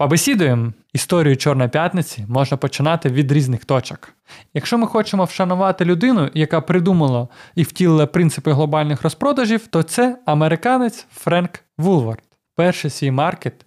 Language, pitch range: Ukrainian, 140-180 Hz